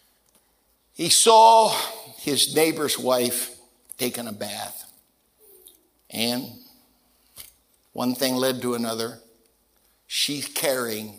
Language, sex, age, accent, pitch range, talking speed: English, male, 60-79, American, 115-140 Hz, 85 wpm